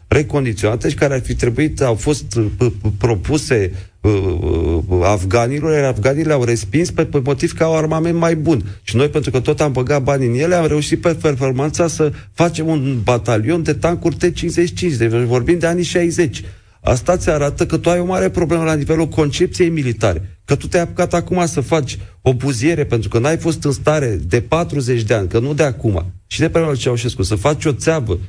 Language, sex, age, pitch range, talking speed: Romanian, male, 40-59, 115-160 Hz, 200 wpm